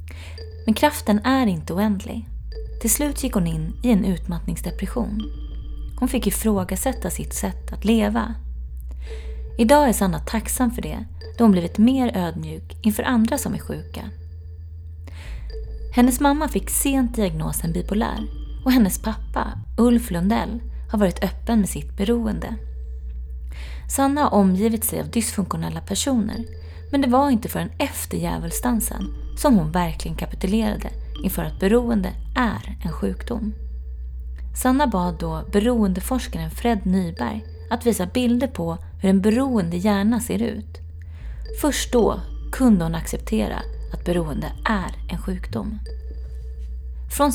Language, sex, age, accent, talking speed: Swedish, female, 20-39, native, 130 wpm